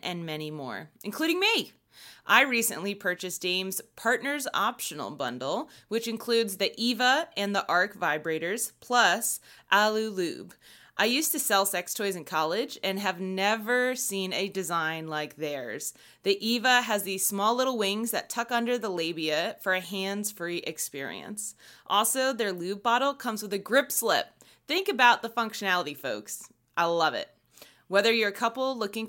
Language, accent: English, American